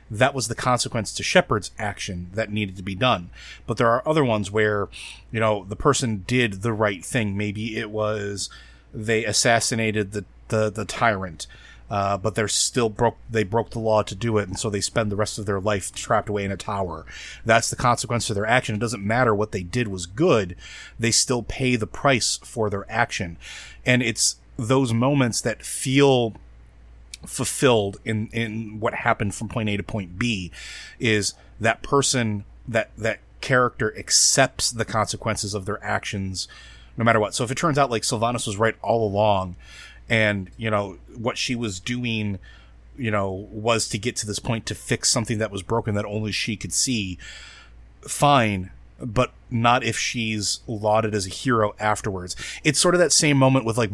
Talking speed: 190 wpm